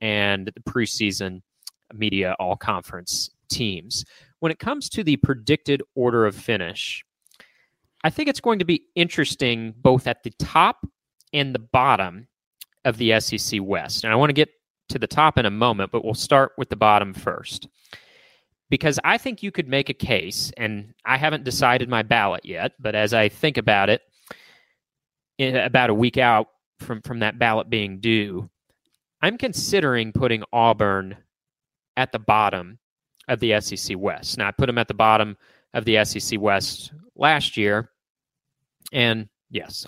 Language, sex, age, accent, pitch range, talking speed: English, male, 30-49, American, 105-140 Hz, 160 wpm